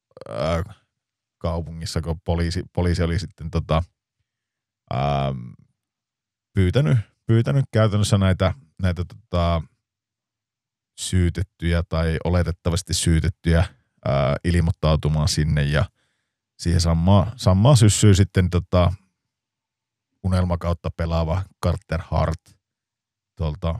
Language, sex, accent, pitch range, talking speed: Finnish, male, native, 85-105 Hz, 80 wpm